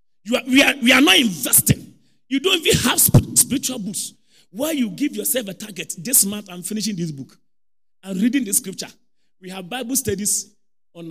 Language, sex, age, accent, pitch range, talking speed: English, male, 40-59, Nigerian, 170-270 Hz, 190 wpm